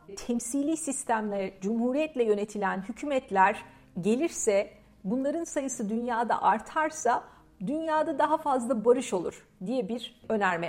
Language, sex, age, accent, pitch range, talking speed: Turkish, female, 50-69, native, 215-300 Hz, 100 wpm